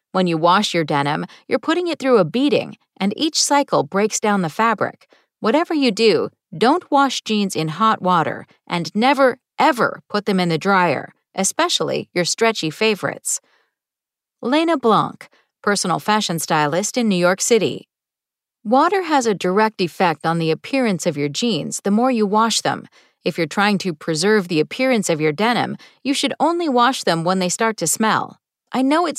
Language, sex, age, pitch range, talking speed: English, female, 40-59, 175-255 Hz, 180 wpm